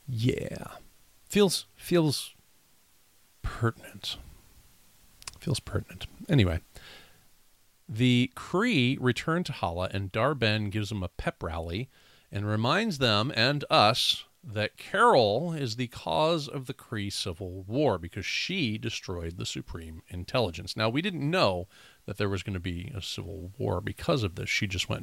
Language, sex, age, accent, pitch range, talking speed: English, male, 40-59, American, 90-120 Hz, 140 wpm